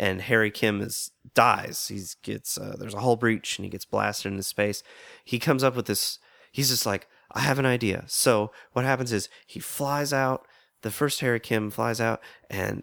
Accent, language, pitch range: American, English, 105-135 Hz